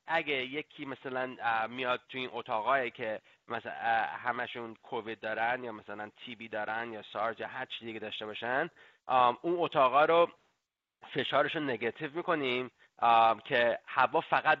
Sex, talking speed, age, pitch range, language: male, 135 wpm, 30-49, 120-155 Hz, Persian